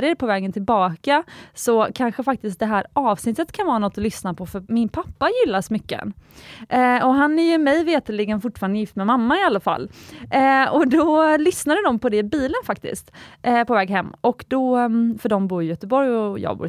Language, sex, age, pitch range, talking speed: Swedish, female, 20-39, 190-250 Hz, 205 wpm